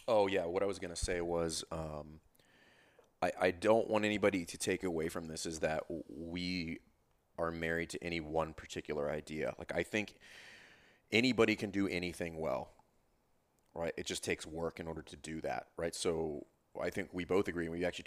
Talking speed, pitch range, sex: 195 wpm, 80-95 Hz, male